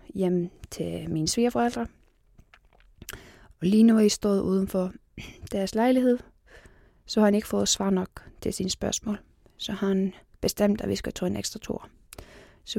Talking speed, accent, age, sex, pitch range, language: 165 wpm, native, 20-39, female, 185-230 Hz, Danish